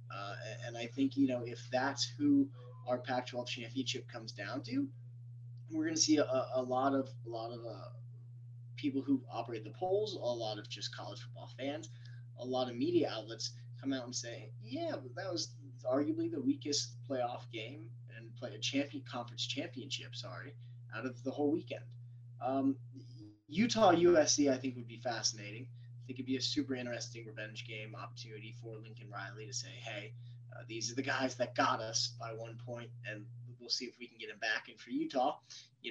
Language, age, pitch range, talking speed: English, 20-39, 115-135 Hz, 190 wpm